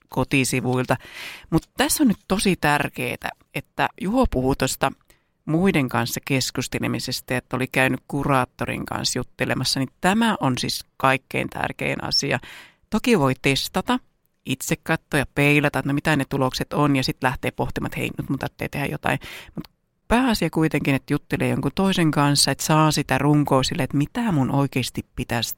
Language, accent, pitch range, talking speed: Finnish, native, 130-175 Hz, 155 wpm